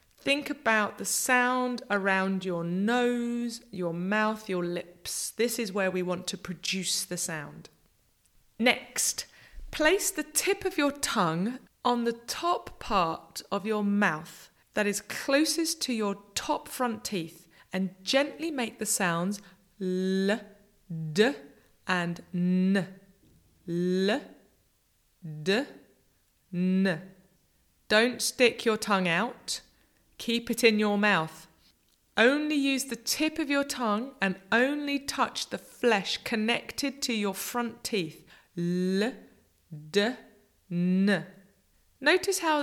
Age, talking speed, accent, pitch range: 20-39, 120 wpm, British, 185-260 Hz